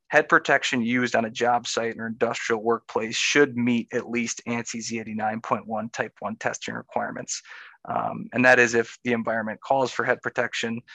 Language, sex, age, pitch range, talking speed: English, male, 20-39, 115-135 Hz, 170 wpm